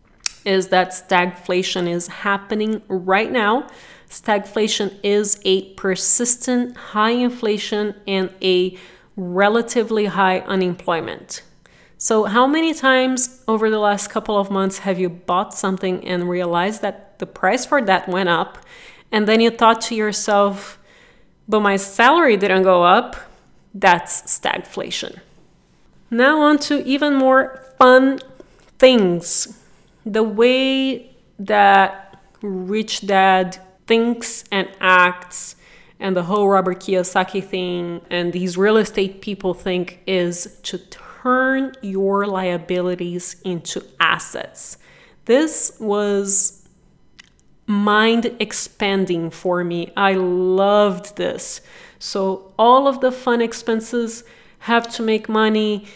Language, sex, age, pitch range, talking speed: English, female, 30-49, 185-230 Hz, 115 wpm